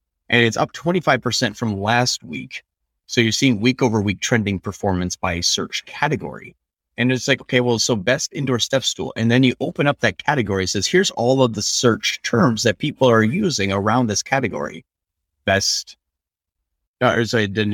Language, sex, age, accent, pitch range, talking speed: English, male, 30-49, American, 95-125 Hz, 180 wpm